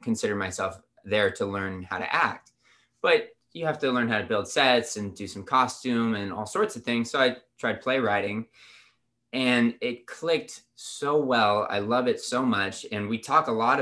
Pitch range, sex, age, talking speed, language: 105-130 Hz, male, 20-39, 195 wpm, English